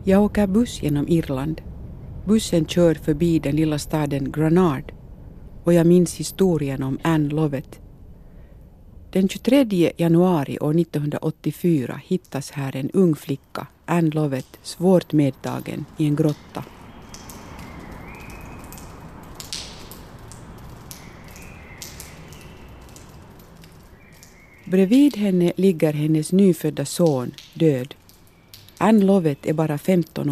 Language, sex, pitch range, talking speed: Swedish, female, 140-180 Hz, 95 wpm